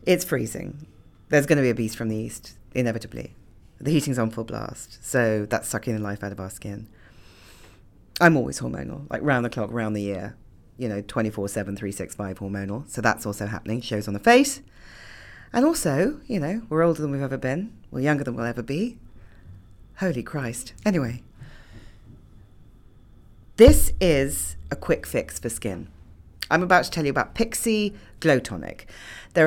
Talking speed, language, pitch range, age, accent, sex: 175 wpm, English, 105-165 Hz, 40-59, British, female